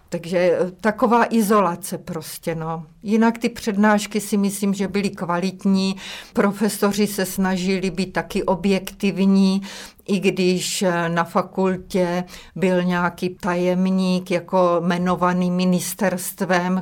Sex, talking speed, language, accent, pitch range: female, 105 wpm, Czech, native, 175-190 Hz